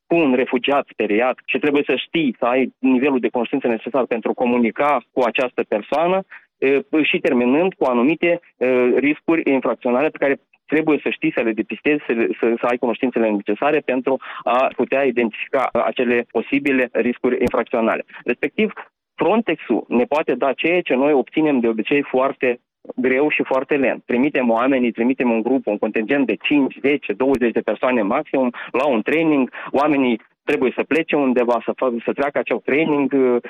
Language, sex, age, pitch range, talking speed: Romanian, male, 20-39, 120-155 Hz, 160 wpm